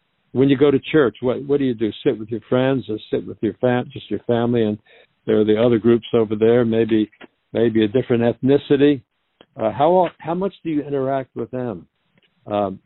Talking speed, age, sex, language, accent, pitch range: 210 wpm, 60-79, male, English, American, 110-145 Hz